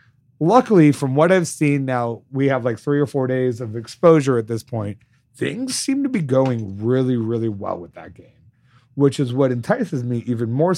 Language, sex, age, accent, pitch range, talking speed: English, male, 30-49, American, 115-145 Hz, 200 wpm